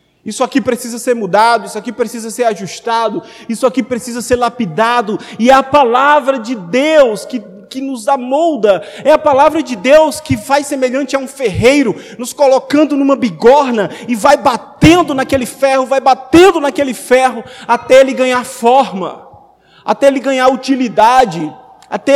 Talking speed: 155 wpm